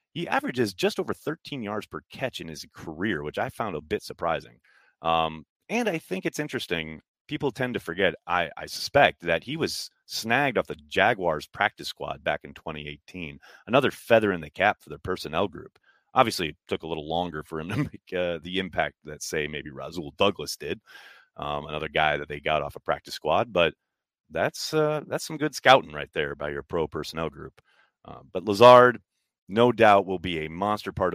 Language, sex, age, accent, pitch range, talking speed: English, male, 30-49, American, 80-125 Hz, 200 wpm